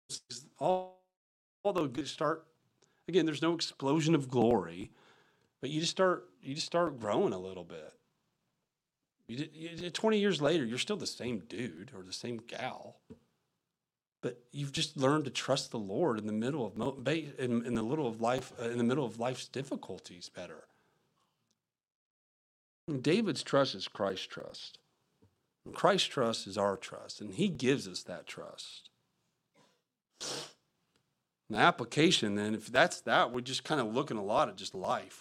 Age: 40-59